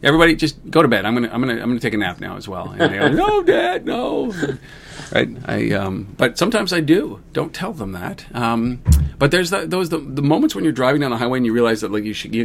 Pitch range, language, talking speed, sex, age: 105-130 Hz, English, 265 wpm, male, 40-59